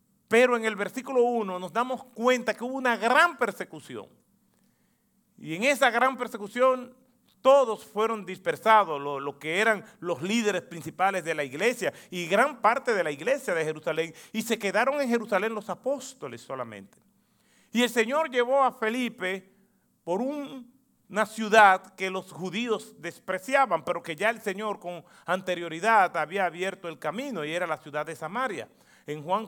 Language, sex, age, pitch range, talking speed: Spanish, male, 40-59, 180-240 Hz, 165 wpm